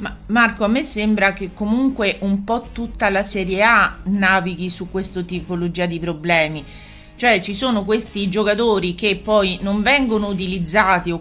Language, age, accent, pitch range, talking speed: Italian, 40-59, native, 180-215 Hz, 155 wpm